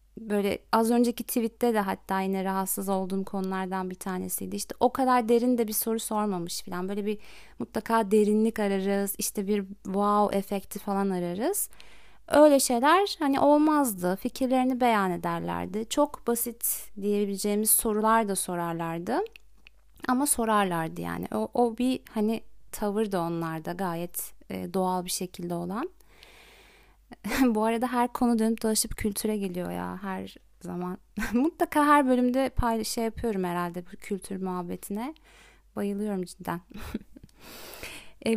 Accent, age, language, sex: native, 30-49, Turkish, female